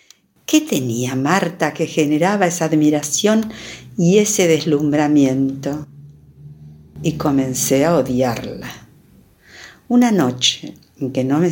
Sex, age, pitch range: female, 50-69, 150-200 Hz